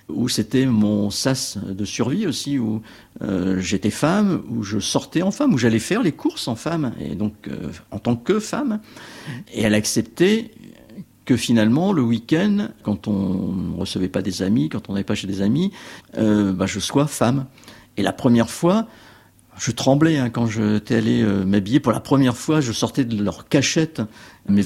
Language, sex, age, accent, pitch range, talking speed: French, male, 50-69, French, 105-150 Hz, 190 wpm